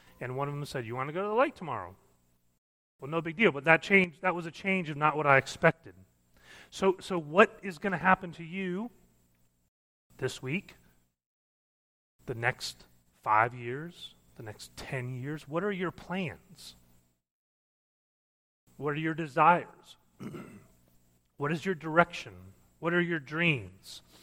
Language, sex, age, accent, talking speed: English, male, 30-49, American, 160 wpm